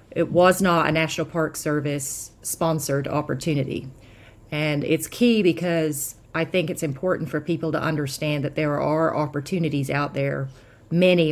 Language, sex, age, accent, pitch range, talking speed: English, female, 40-59, American, 135-160 Hz, 150 wpm